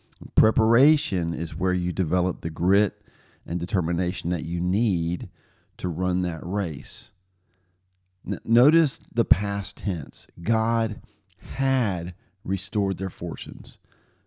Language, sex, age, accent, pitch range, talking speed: English, male, 40-59, American, 90-110 Hz, 105 wpm